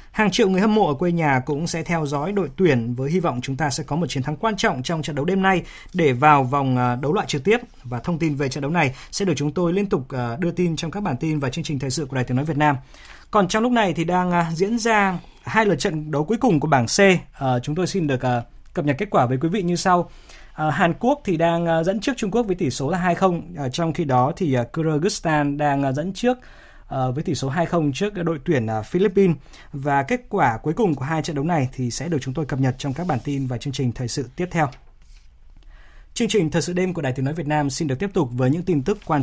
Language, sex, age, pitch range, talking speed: Vietnamese, male, 20-39, 140-185 Hz, 270 wpm